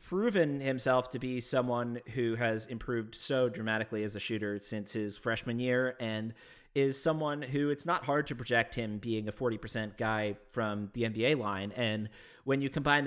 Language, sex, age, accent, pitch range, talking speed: English, male, 30-49, American, 110-125 Hz, 180 wpm